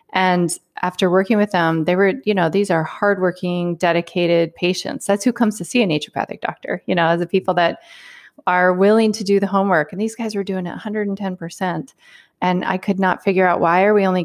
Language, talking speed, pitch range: English, 215 wpm, 170-210 Hz